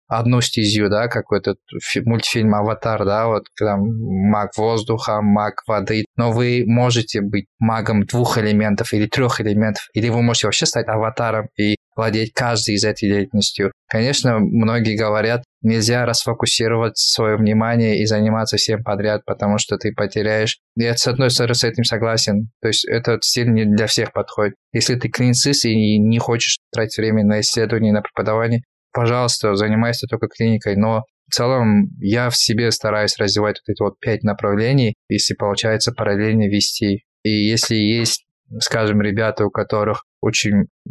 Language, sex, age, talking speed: Russian, male, 20-39, 155 wpm